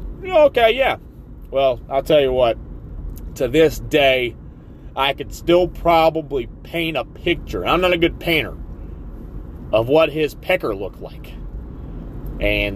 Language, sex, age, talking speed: English, male, 30-49, 135 wpm